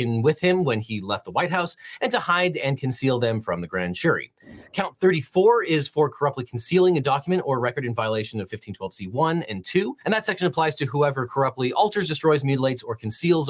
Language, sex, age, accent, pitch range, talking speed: English, male, 30-49, American, 110-155 Hz, 210 wpm